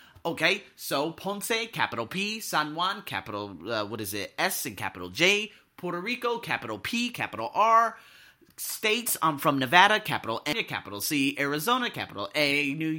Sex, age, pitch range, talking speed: male, 30-49, 120-190 Hz, 155 wpm